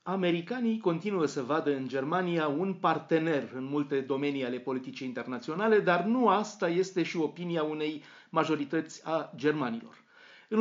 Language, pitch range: Romanian, 130-175 Hz